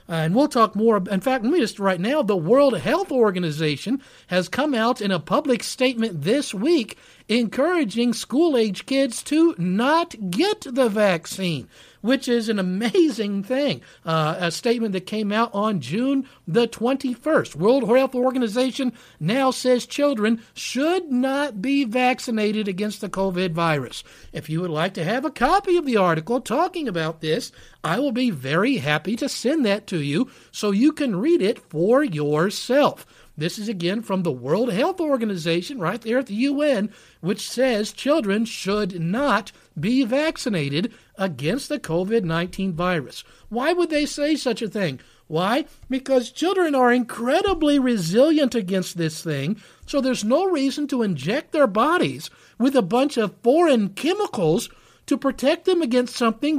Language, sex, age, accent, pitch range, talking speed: English, male, 50-69, American, 195-275 Hz, 160 wpm